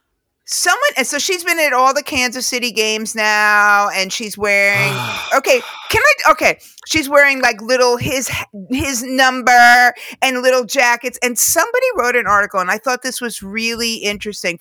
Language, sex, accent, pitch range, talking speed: English, female, American, 190-255 Hz, 170 wpm